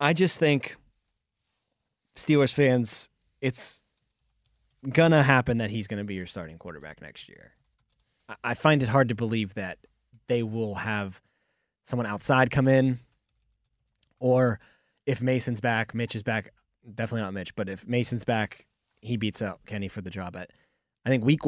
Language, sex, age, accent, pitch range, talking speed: English, male, 20-39, American, 100-125 Hz, 160 wpm